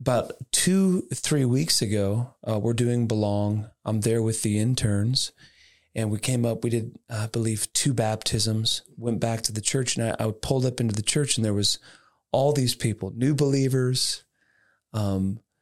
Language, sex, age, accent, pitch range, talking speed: English, male, 30-49, American, 110-130 Hz, 175 wpm